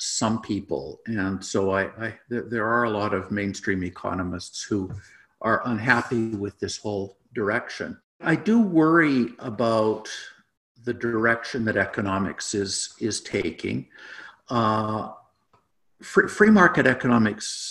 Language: English